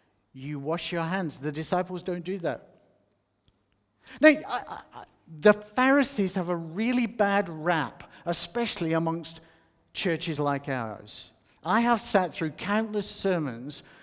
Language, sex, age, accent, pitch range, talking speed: English, male, 50-69, British, 155-205 Hz, 120 wpm